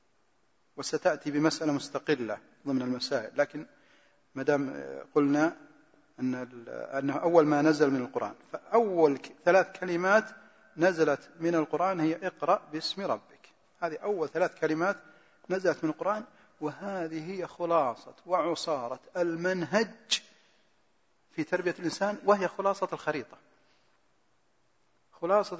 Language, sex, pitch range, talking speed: Arabic, male, 150-205 Hz, 105 wpm